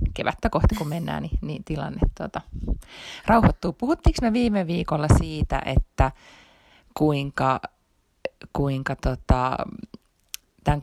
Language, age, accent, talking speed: Finnish, 30-49, native, 105 wpm